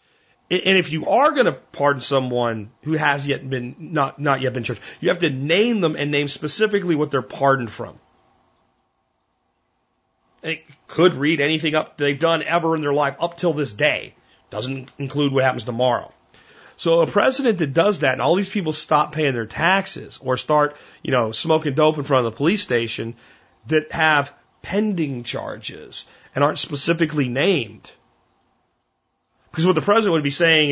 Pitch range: 130-165 Hz